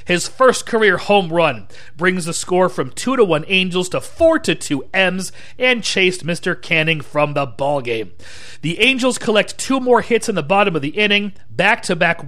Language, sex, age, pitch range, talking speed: English, male, 40-59, 155-215 Hz, 185 wpm